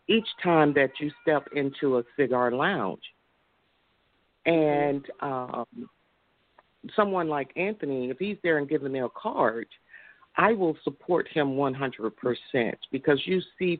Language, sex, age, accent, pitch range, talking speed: English, female, 50-69, American, 125-170 Hz, 130 wpm